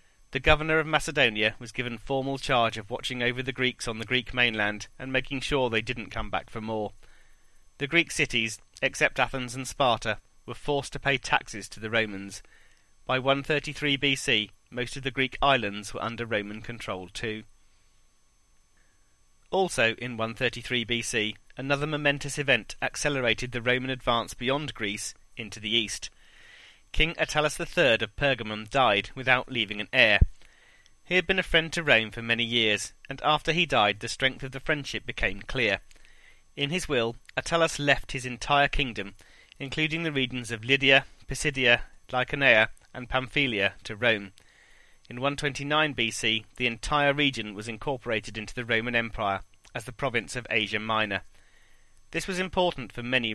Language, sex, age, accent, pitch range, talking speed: English, male, 30-49, British, 110-140 Hz, 160 wpm